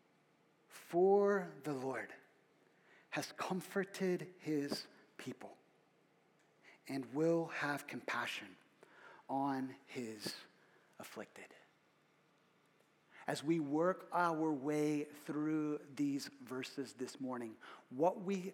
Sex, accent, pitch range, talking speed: male, American, 155-210 Hz, 85 wpm